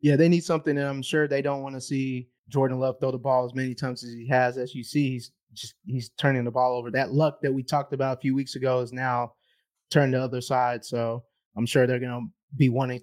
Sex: male